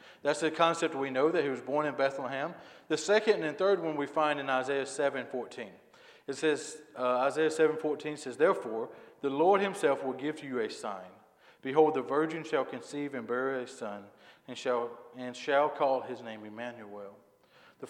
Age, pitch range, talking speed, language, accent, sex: 40-59, 130-160 Hz, 185 wpm, English, American, male